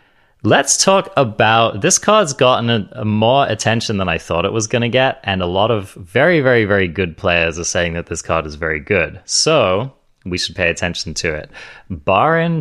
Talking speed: 205 wpm